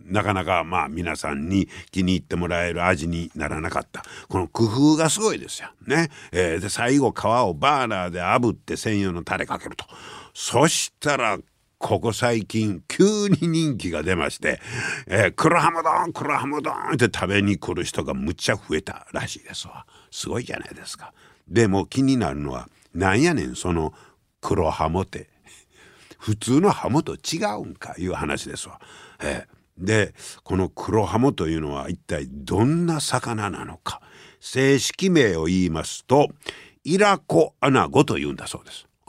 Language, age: Japanese, 60-79